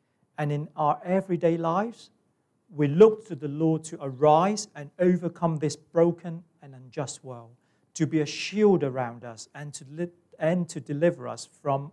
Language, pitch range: English, 130-165 Hz